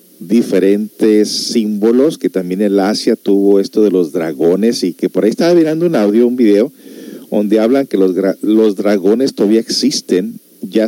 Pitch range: 100-125 Hz